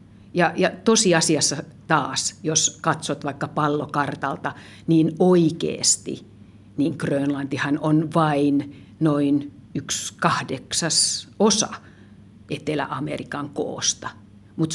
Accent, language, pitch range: native, Finnish, 145-185 Hz